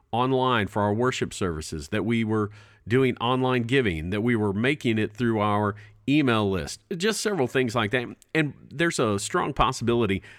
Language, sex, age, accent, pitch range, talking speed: English, male, 50-69, American, 100-130 Hz, 175 wpm